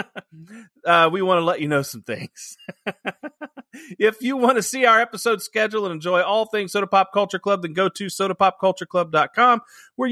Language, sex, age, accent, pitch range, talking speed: English, male, 30-49, American, 175-235 Hz, 180 wpm